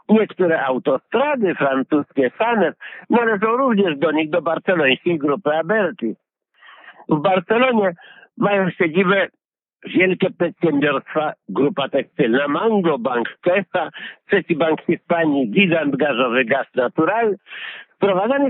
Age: 60-79